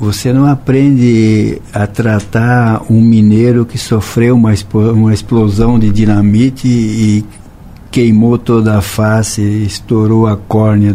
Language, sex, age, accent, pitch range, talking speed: Portuguese, male, 60-79, Brazilian, 105-125 Hz, 115 wpm